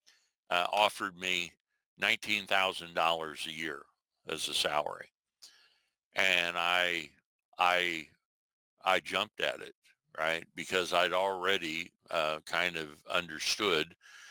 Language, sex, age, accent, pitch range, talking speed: English, male, 60-79, American, 85-95 Hz, 110 wpm